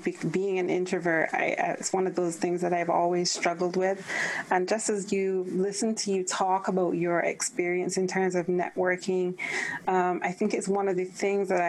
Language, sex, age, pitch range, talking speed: English, female, 30-49, 175-195 Hz, 190 wpm